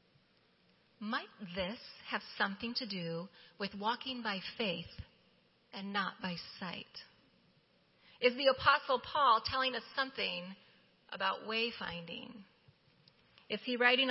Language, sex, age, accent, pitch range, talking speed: English, female, 30-49, American, 195-245 Hz, 110 wpm